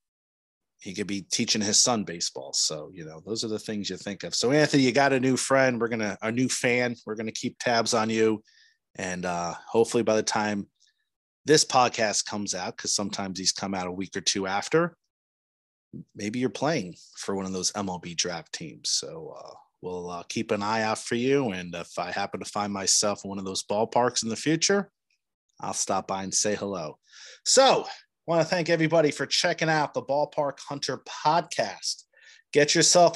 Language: English